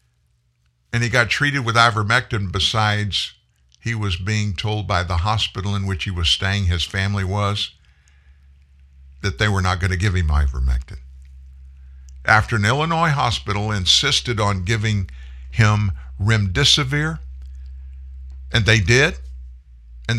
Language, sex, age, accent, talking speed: English, male, 50-69, American, 130 wpm